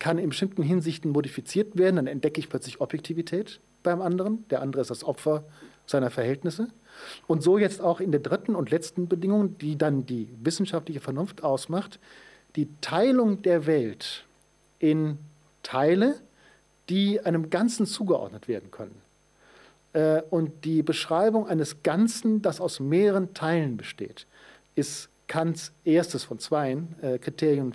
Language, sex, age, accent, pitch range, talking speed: German, male, 50-69, German, 145-185 Hz, 140 wpm